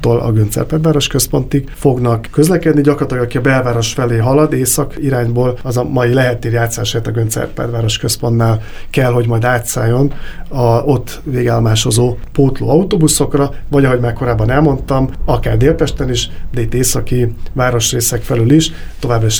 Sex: male